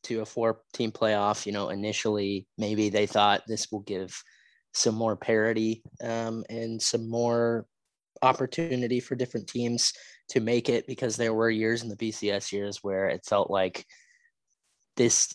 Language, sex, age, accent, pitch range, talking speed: English, male, 20-39, American, 105-120 Hz, 160 wpm